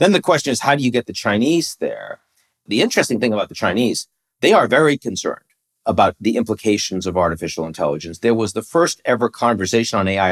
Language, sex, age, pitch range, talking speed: English, male, 40-59, 95-130 Hz, 205 wpm